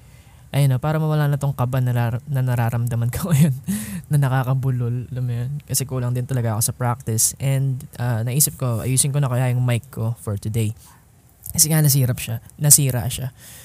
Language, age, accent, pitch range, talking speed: Filipino, 20-39, native, 120-150 Hz, 175 wpm